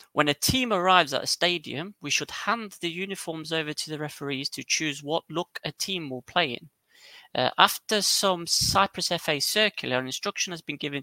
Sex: male